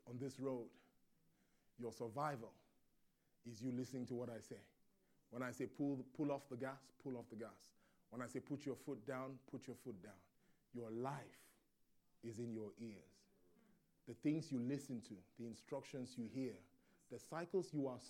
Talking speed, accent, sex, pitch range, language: 180 wpm, Nigerian, male, 125-160 Hz, English